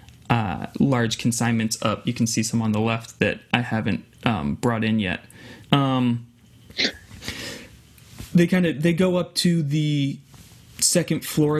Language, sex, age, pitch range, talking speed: English, male, 20-39, 110-135 Hz, 150 wpm